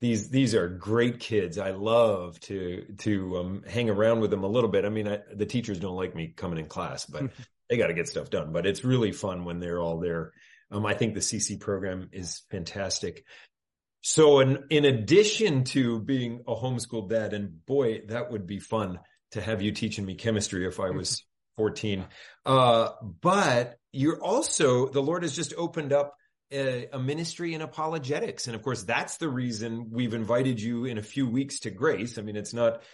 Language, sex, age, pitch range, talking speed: English, male, 30-49, 105-145 Hz, 200 wpm